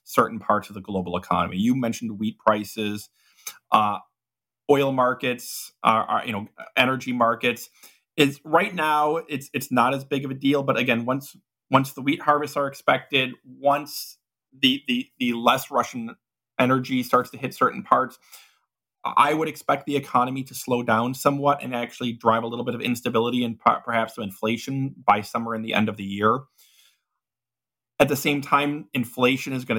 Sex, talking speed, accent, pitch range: male, 175 wpm, American, 115-140 Hz